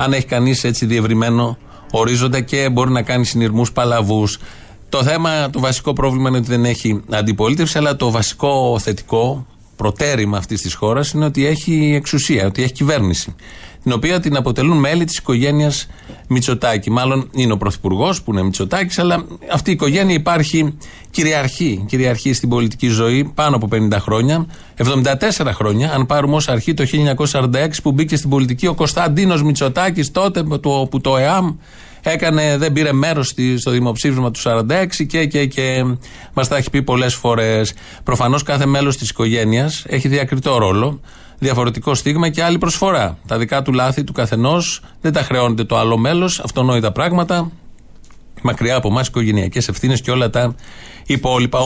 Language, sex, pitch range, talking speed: Greek, male, 120-150 Hz, 160 wpm